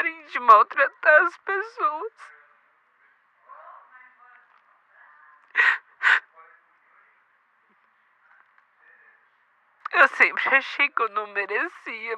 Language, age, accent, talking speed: Portuguese, 50-69, Brazilian, 55 wpm